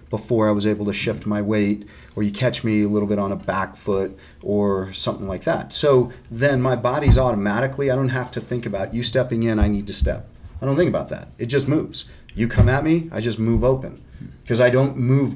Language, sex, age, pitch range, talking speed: English, male, 30-49, 100-125 Hz, 240 wpm